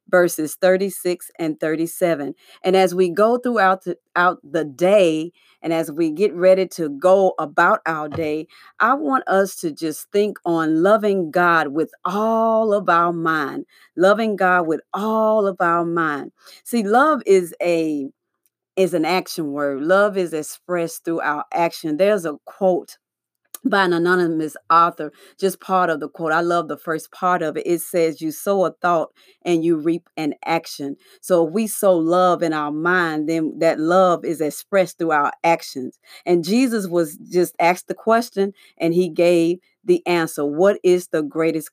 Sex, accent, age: female, American, 40-59